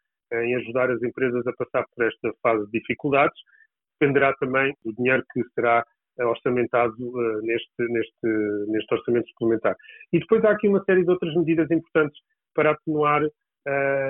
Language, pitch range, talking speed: Portuguese, 120-145 Hz, 150 wpm